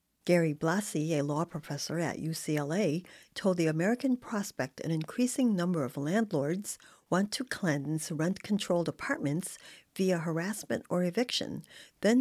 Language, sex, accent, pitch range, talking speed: English, female, American, 155-205 Hz, 130 wpm